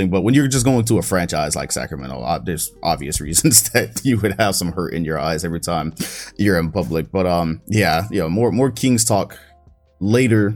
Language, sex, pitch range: English, male, 85-110 Hz